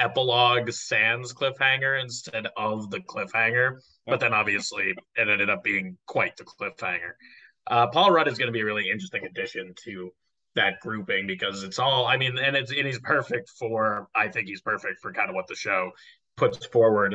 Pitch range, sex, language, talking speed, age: 100-130 Hz, male, English, 190 wpm, 20-39